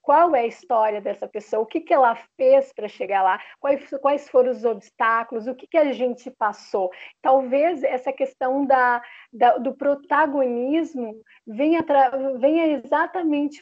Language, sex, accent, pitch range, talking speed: Portuguese, female, Brazilian, 225-275 Hz, 145 wpm